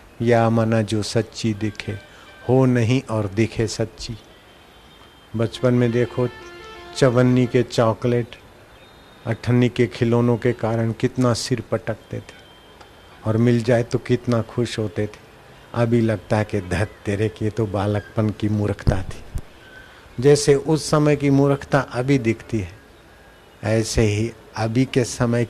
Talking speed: 135 wpm